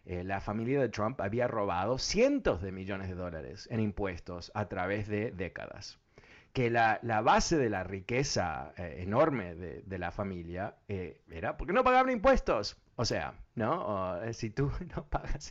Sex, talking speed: male, 170 wpm